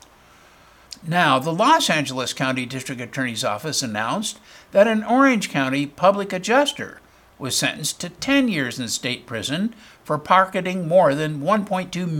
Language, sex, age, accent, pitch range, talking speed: English, male, 60-79, American, 140-190 Hz, 140 wpm